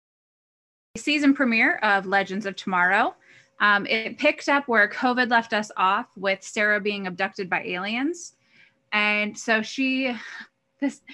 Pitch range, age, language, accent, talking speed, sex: 200-255 Hz, 20-39, English, American, 135 wpm, female